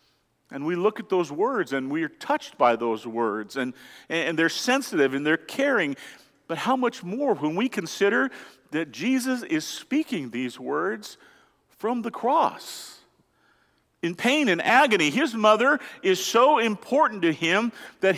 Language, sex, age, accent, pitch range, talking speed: English, male, 50-69, American, 155-240 Hz, 160 wpm